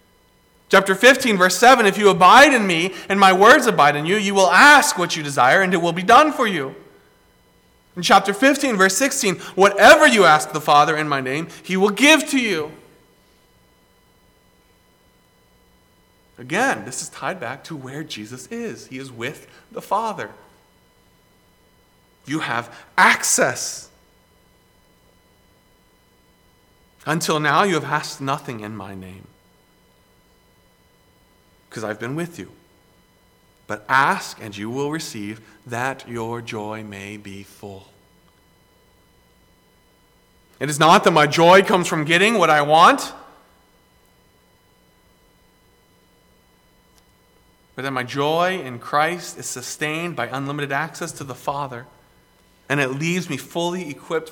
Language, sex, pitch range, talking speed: English, male, 115-185 Hz, 135 wpm